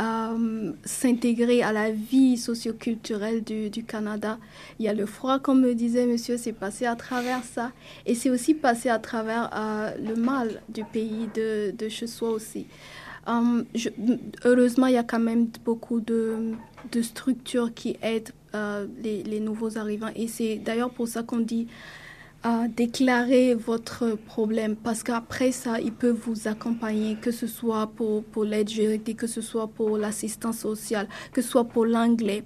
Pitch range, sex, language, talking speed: 215-235 Hz, female, French, 175 wpm